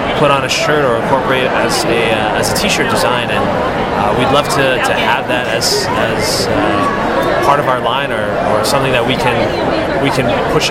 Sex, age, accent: male, 20-39, American